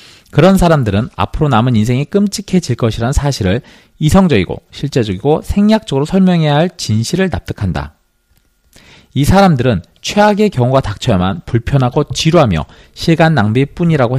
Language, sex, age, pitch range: Korean, male, 40-59, 95-160 Hz